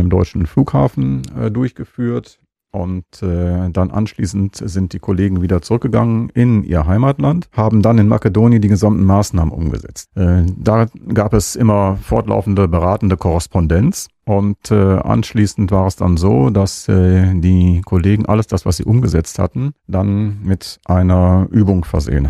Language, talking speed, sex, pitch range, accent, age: German, 150 wpm, male, 90-110 Hz, German, 40-59